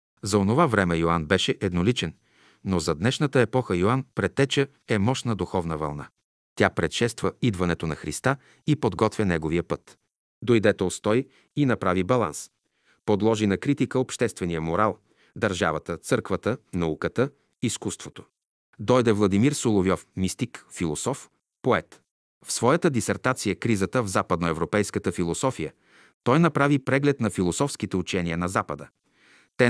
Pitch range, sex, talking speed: 90-125 Hz, male, 125 wpm